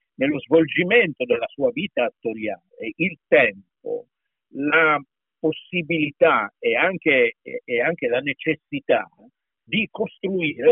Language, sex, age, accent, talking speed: Italian, male, 50-69, native, 100 wpm